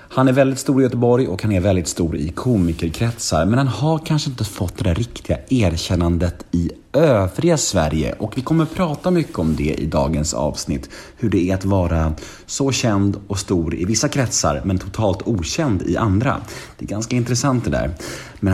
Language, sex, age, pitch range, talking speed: Swedish, male, 30-49, 80-115 Hz, 190 wpm